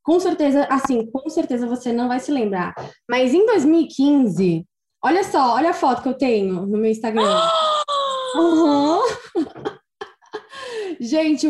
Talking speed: 135 wpm